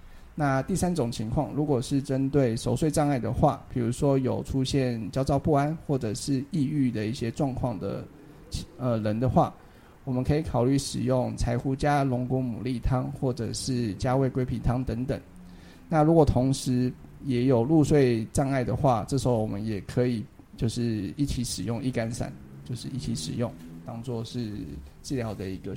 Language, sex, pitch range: Chinese, male, 115-140 Hz